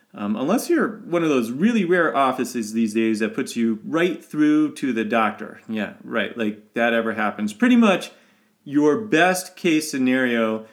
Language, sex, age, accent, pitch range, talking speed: English, male, 30-49, American, 105-135 Hz, 175 wpm